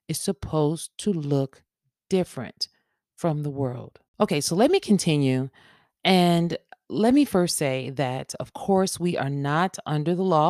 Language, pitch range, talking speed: English, 135-180 Hz, 155 wpm